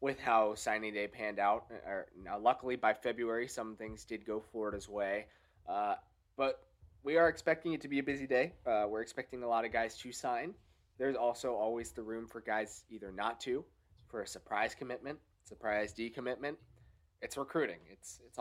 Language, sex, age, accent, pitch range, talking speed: English, male, 20-39, American, 110-130 Hz, 185 wpm